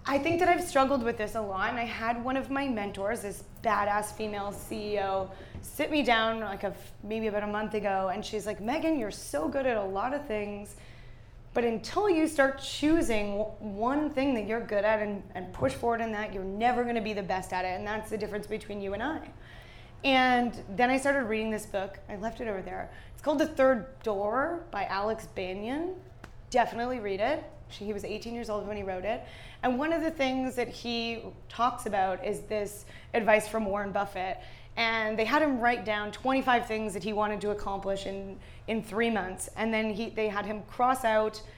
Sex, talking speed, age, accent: female, 215 wpm, 20-39, American